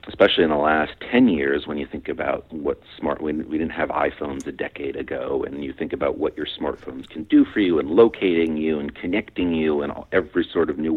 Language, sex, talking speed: English, male, 230 wpm